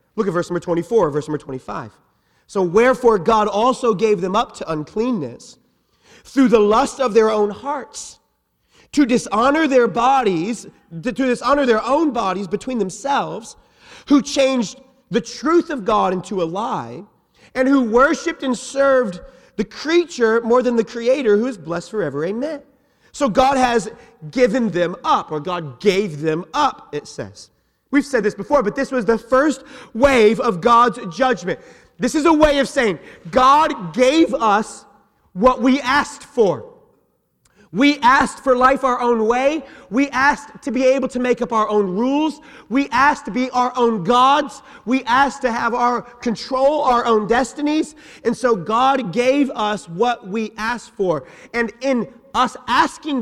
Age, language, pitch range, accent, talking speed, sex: 30-49, English, 210-270 Hz, American, 165 wpm, male